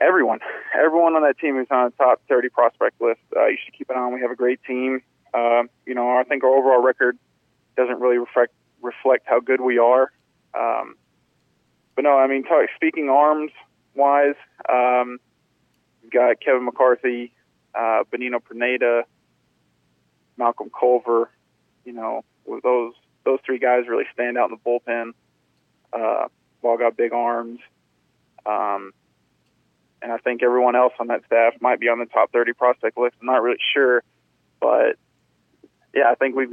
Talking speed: 170 wpm